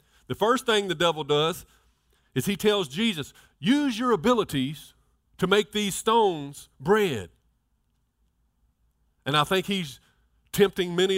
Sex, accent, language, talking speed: male, American, English, 130 wpm